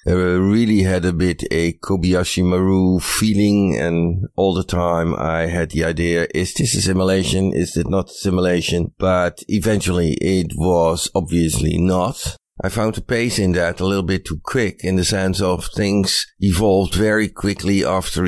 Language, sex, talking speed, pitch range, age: English, male, 170 wpm, 85-100 Hz, 50-69